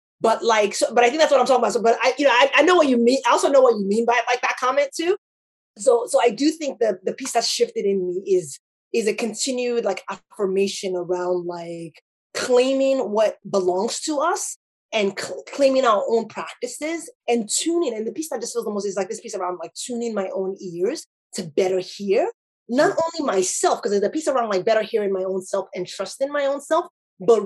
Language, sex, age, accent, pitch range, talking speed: English, female, 20-39, American, 195-275 Hz, 230 wpm